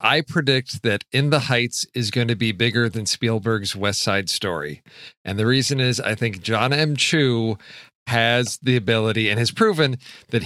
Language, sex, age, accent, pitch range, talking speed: English, male, 40-59, American, 110-125 Hz, 185 wpm